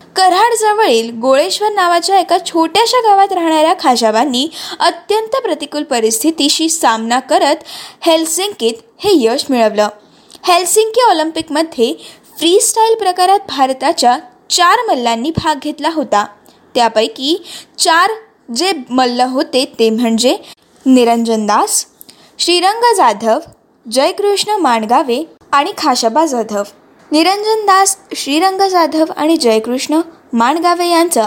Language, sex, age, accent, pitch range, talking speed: Marathi, female, 20-39, native, 250-375 Hz, 95 wpm